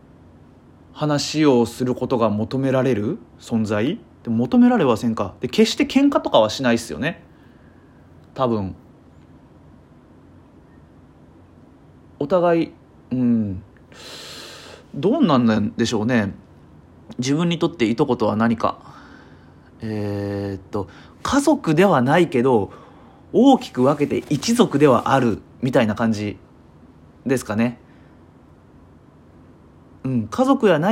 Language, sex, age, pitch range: Japanese, male, 30-49, 110-165 Hz